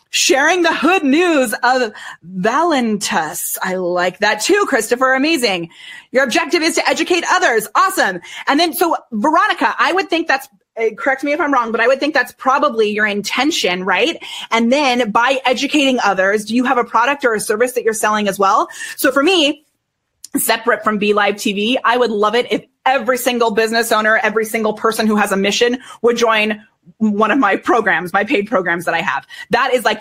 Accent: American